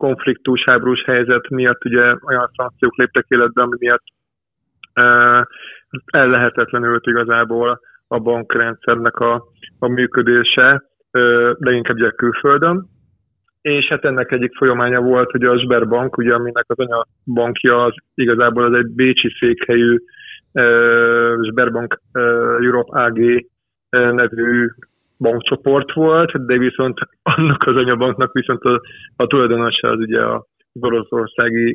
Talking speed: 115 wpm